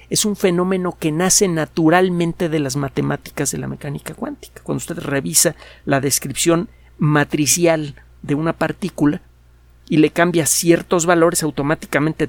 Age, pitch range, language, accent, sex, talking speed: 50-69, 135-175 Hz, Spanish, Mexican, male, 135 wpm